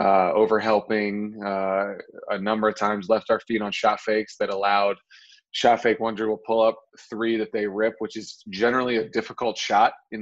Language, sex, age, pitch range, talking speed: English, male, 20-39, 105-125 Hz, 195 wpm